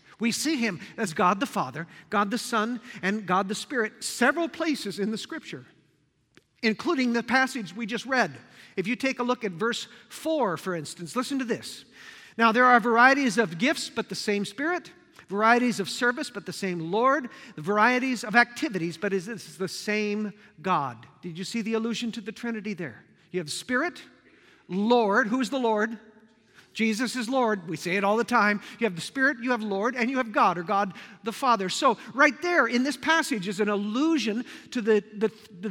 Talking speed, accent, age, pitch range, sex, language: 195 wpm, American, 50-69, 210-260 Hz, male, English